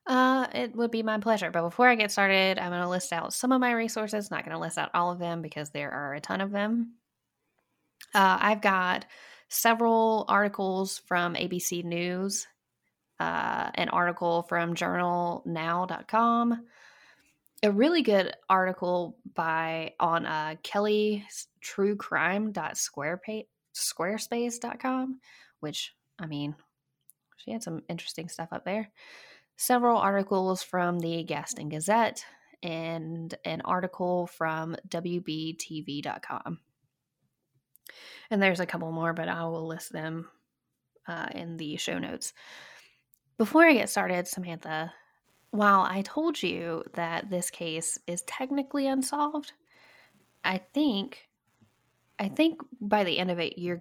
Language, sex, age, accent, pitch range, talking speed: English, female, 10-29, American, 165-220 Hz, 130 wpm